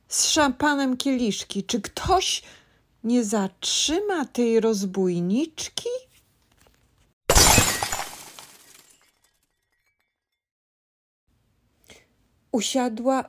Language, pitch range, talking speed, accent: Polish, 185-260 Hz, 45 wpm, native